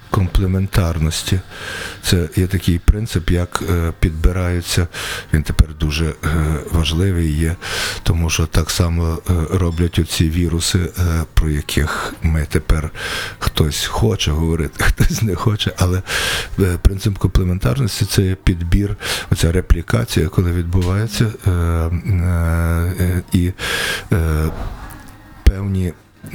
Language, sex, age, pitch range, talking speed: Ukrainian, male, 50-69, 85-100 Hz, 90 wpm